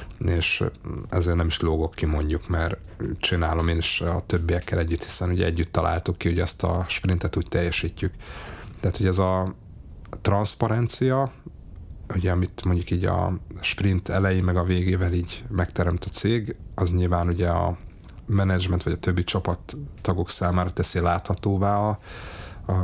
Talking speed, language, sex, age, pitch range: 155 wpm, Hungarian, male, 30-49, 85-95 Hz